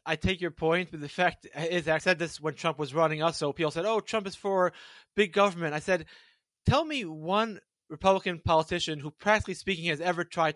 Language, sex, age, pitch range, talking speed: English, male, 20-39, 155-185 Hz, 215 wpm